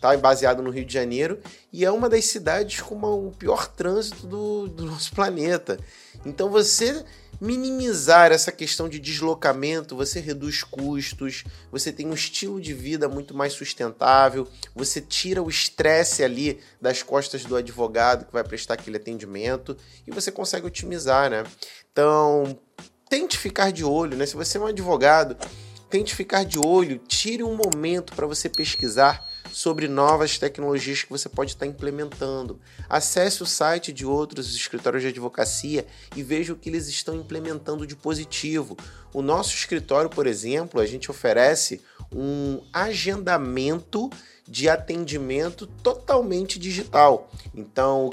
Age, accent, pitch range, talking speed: 30-49, Brazilian, 130-175 Hz, 145 wpm